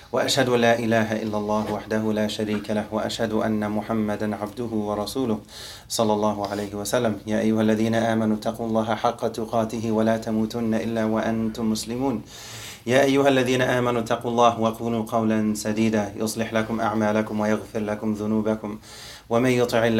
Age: 30-49